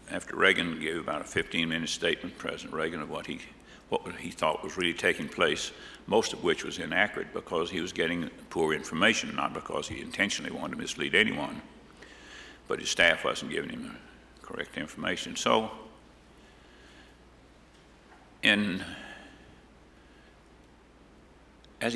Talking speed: 140 wpm